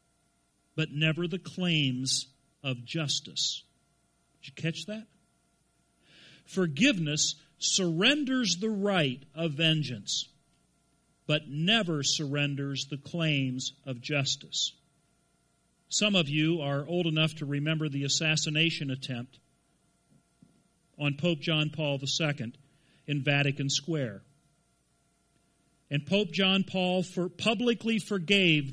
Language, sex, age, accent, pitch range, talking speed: English, male, 50-69, American, 140-185 Hz, 100 wpm